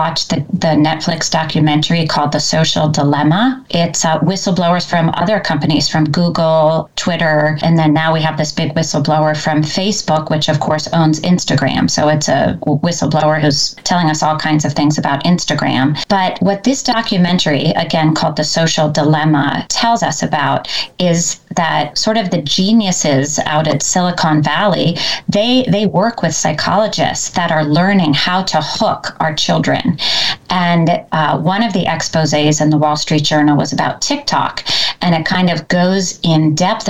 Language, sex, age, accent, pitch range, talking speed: English, female, 30-49, American, 155-190 Hz, 165 wpm